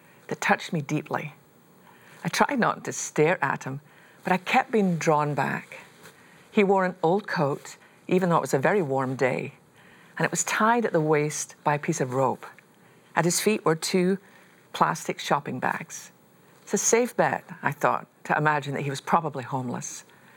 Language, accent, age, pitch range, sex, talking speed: English, British, 50-69, 145-190 Hz, female, 185 wpm